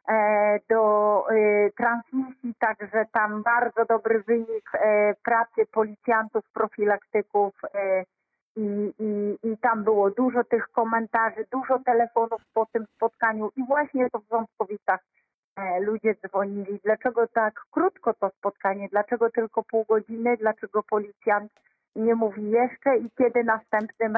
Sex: female